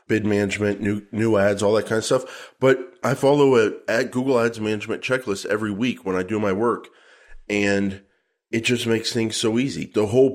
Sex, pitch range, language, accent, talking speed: male, 100-120 Hz, English, American, 205 wpm